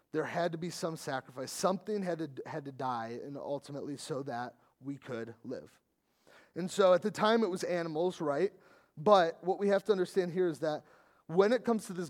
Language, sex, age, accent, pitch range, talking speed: English, male, 30-49, American, 145-185 Hz, 210 wpm